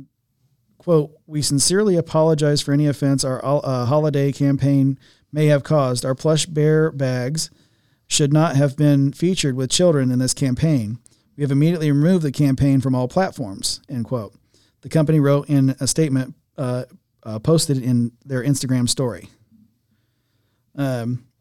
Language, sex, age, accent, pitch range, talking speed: English, male, 40-59, American, 130-155 Hz, 150 wpm